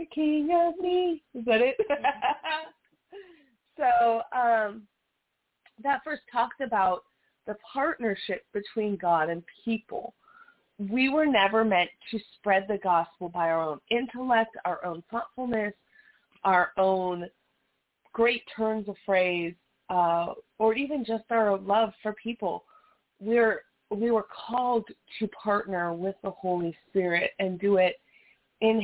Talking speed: 125 wpm